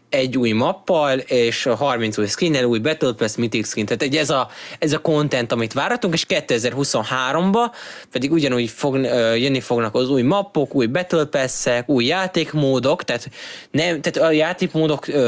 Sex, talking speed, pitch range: male, 155 wpm, 115-145 Hz